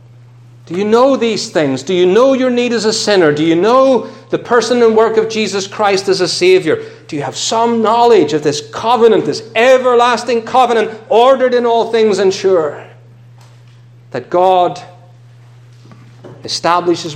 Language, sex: English, male